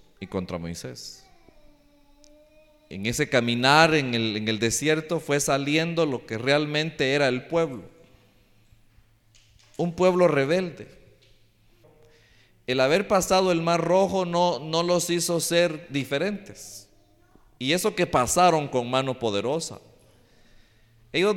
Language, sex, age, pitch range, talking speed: Spanish, male, 40-59, 125-185 Hz, 115 wpm